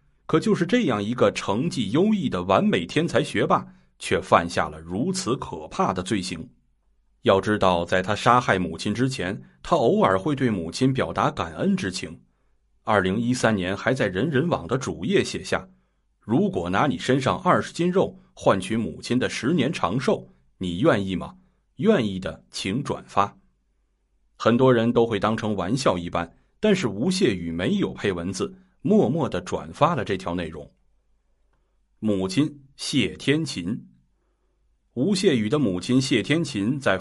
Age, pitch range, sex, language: 30-49, 85-130 Hz, male, Chinese